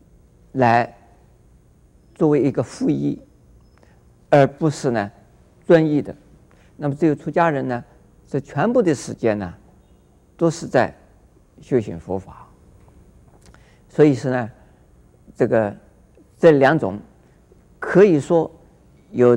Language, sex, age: Chinese, male, 50-69